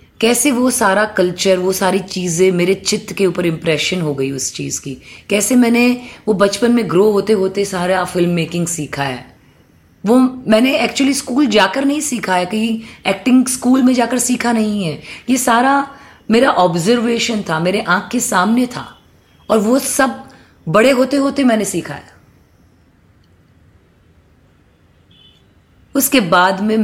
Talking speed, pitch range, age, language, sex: 150 wpm, 175-240 Hz, 30-49, Hindi, female